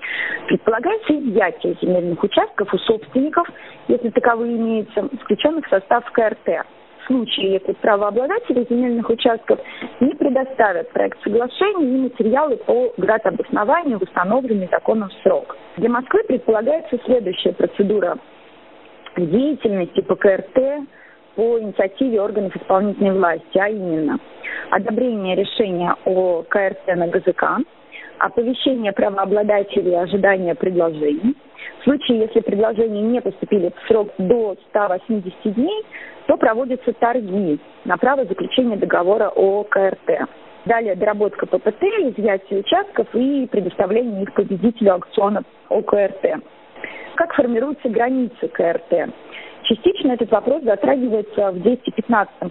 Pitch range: 195-255 Hz